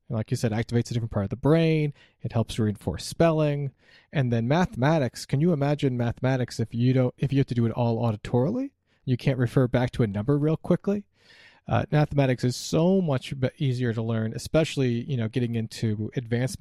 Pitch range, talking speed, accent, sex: 115-140 Hz, 200 wpm, American, male